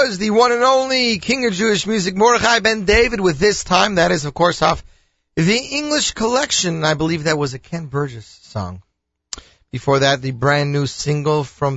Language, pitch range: English, 135-190 Hz